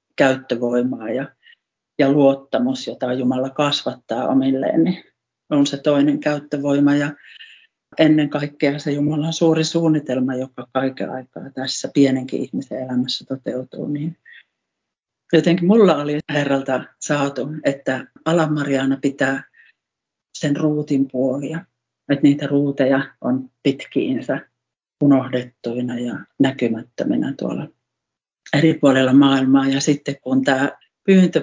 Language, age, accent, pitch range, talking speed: Finnish, 50-69, native, 130-150 Hz, 110 wpm